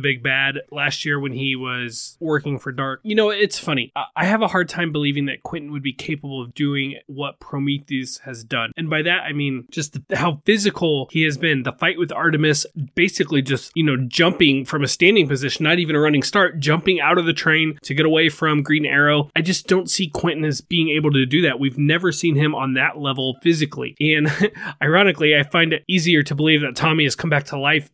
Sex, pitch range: male, 140-170 Hz